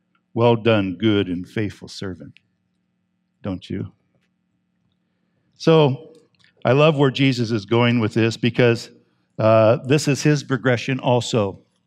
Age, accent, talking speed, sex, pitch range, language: 50-69, American, 120 wpm, male, 125-170 Hz, English